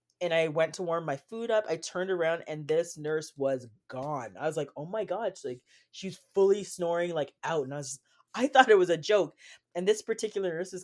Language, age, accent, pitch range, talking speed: English, 20-39, American, 150-185 Hz, 245 wpm